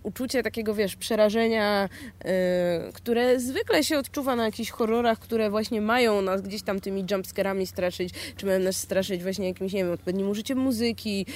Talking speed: 170 wpm